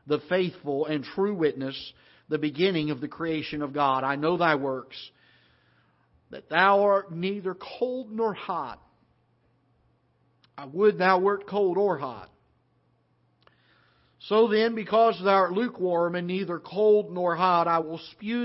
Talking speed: 145 wpm